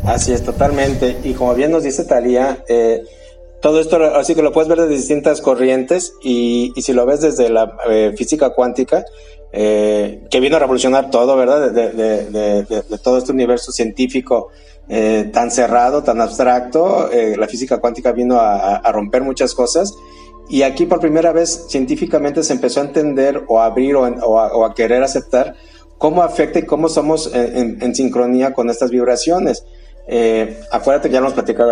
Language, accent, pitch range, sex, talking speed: Spanish, Mexican, 115-145 Hz, male, 190 wpm